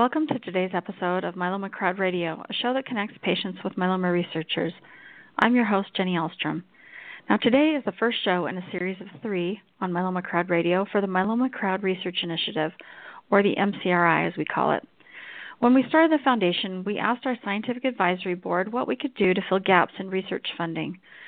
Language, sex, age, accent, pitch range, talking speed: English, female, 40-59, American, 180-220 Hz, 195 wpm